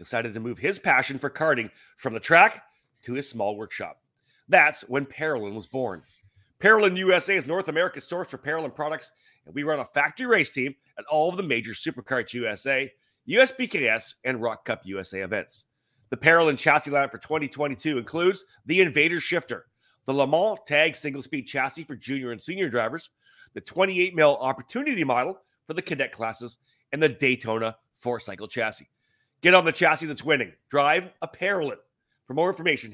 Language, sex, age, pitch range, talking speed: English, male, 30-49, 125-165 Hz, 170 wpm